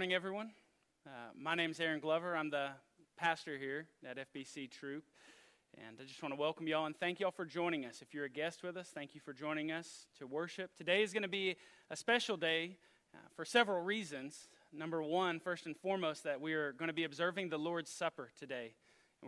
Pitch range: 145-180 Hz